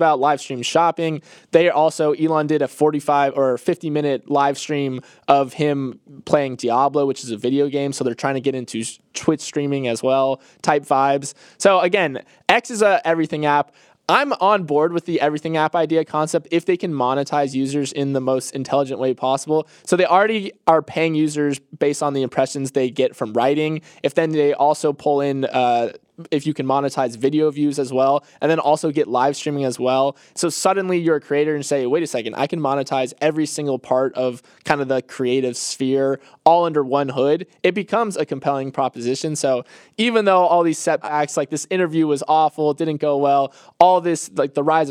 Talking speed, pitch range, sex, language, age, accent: 200 wpm, 135-160 Hz, male, English, 20-39, American